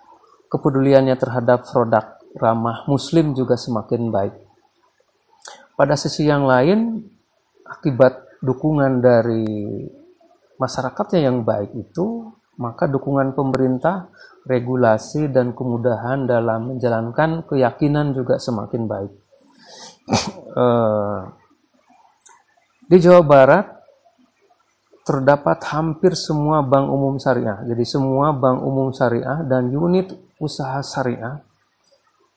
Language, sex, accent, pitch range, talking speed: Indonesian, male, native, 120-160 Hz, 90 wpm